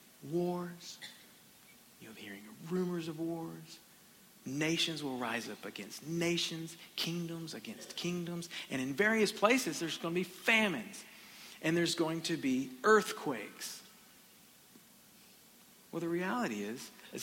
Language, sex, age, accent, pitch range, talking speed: English, male, 50-69, American, 150-210 Hz, 125 wpm